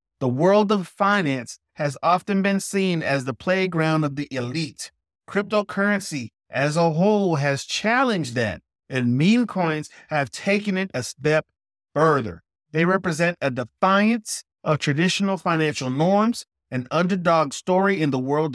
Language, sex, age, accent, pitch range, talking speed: English, male, 30-49, American, 145-195 Hz, 140 wpm